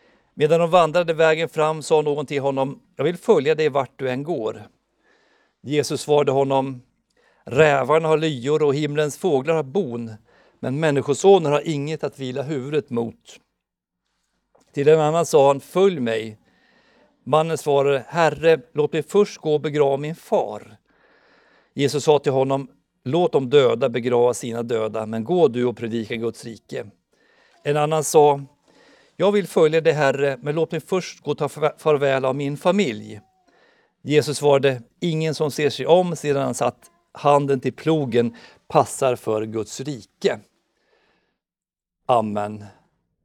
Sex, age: male, 50-69